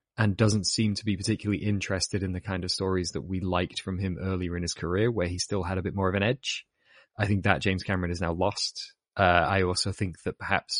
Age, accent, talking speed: 20-39, British, 250 wpm